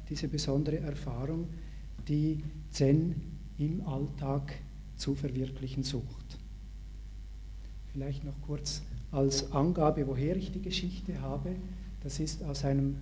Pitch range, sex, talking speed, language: 125-165 Hz, male, 110 wpm, German